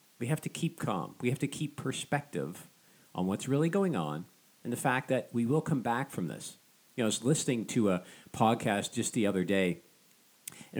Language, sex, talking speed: English, male, 210 wpm